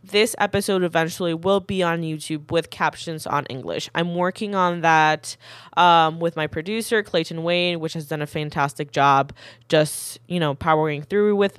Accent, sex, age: American, female, 10-29